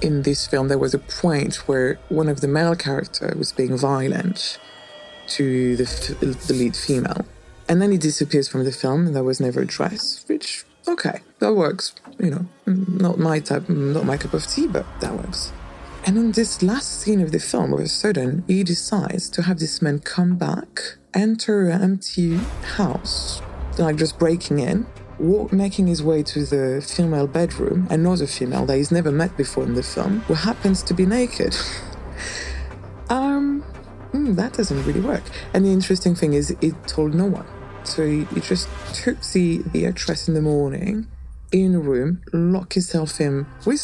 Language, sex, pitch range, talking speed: English, female, 140-190 Hz, 180 wpm